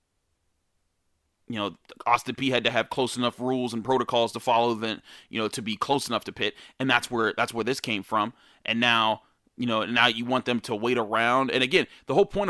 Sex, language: male, English